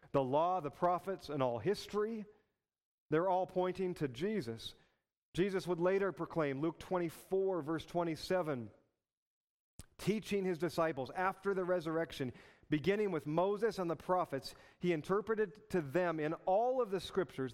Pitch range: 120-175 Hz